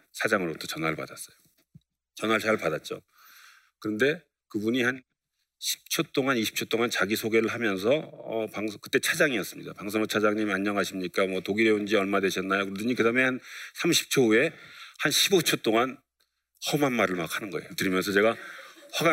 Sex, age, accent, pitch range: male, 40-59, native, 85-115 Hz